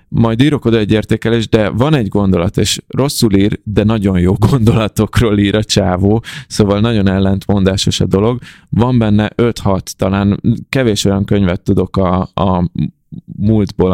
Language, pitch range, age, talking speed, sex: Hungarian, 95-110 Hz, 20-39, 145 wpm, male